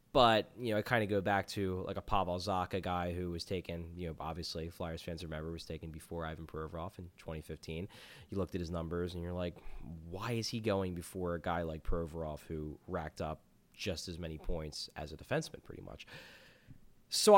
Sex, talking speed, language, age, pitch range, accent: male, 205 wpm, English, 20-39, 85-115 Hz, American